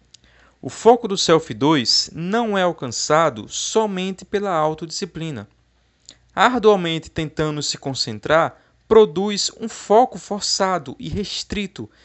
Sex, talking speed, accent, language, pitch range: male, 105 wpm, Brazilian, Portuguese, 135-190 Hz